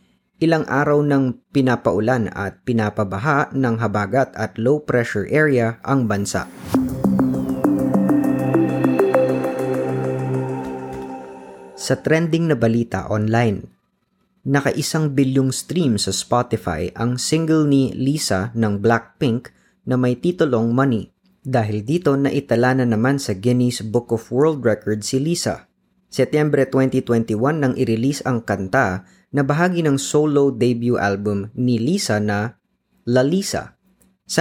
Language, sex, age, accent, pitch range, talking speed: Filipino, female, 20-39, native, 95-135 Hz, 110 wpm